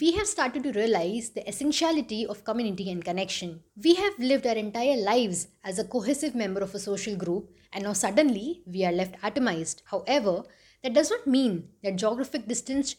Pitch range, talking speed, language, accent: 200-270 Hz, 185 wpm, English, Indian